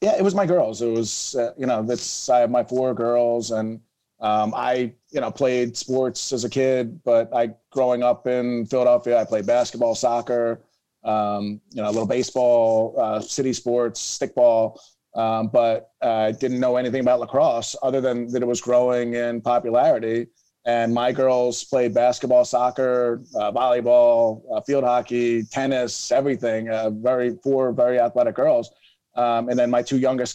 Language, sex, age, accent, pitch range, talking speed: English, male, 30-49, American, 115-130 Hz, 170 wpm